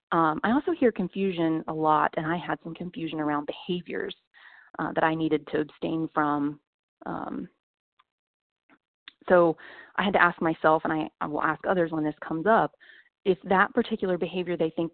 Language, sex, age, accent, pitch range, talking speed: English, female, 30-49, American, 160-205 Hz, 175 wpm